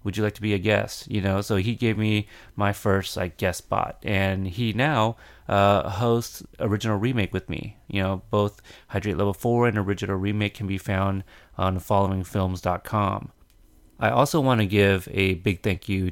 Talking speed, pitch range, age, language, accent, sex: 180 wpm, 95-110 Hz, 30-49, English, American, male